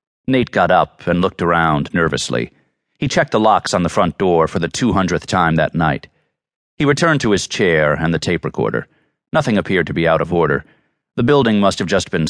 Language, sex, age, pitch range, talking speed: English, male, 40-59, 80-115 Hz, 215 wpm